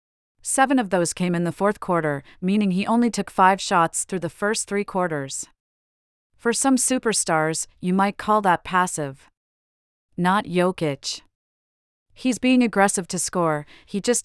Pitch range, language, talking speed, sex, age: 155-205 Hz, English, 150 wpm, female, 40-59